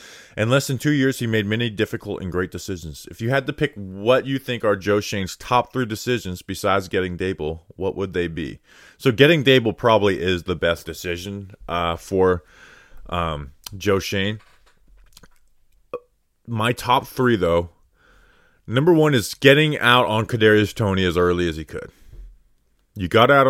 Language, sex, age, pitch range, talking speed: Slovak, male, 30-49, 90-120 Hz, 170 wpm